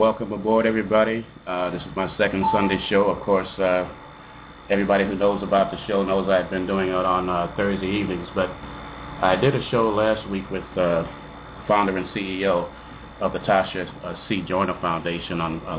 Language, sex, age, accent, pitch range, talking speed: English, male, 30-49, American, 85-100 Hz, 180 wpm